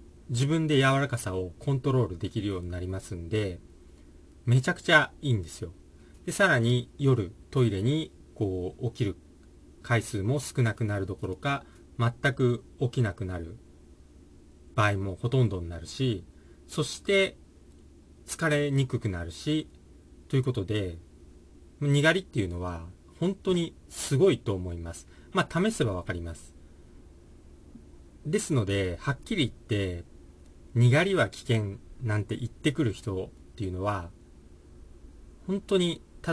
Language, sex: Japanese, male